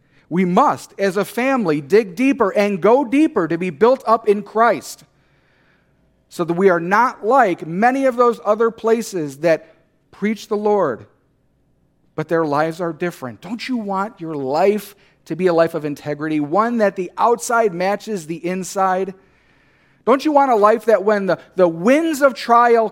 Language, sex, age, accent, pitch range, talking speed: English, male, 40-59, American, 160-225 Hz, 175 wpm